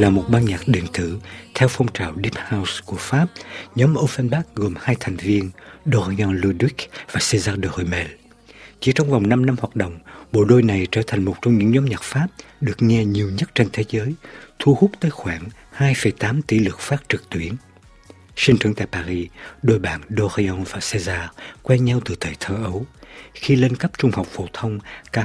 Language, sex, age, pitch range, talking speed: Vietnamese, male, 60-79, 95-125 Hz, 195 wpm